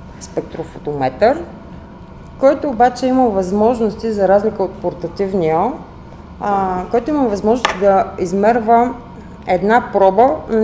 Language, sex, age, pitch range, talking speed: Bulgarian, female, 30-49, 190-245 Hz, 100 wpm